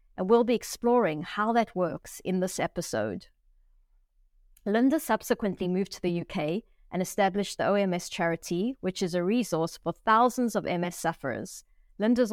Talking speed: 150 wpm